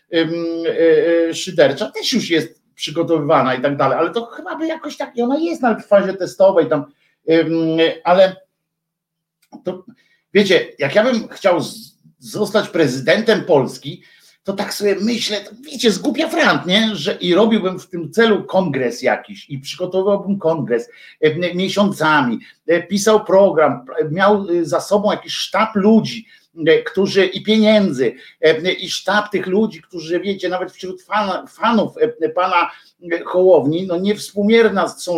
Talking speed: 150 wpm